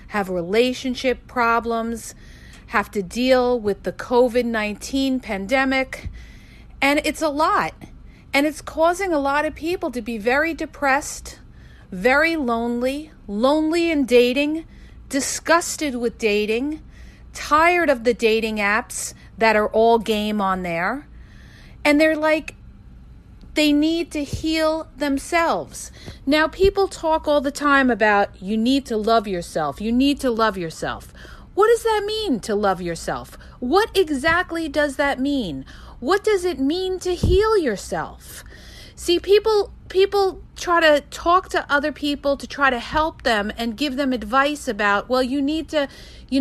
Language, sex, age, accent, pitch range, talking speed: English, female, 40-59, American, 230-315 Hz, 145 wpm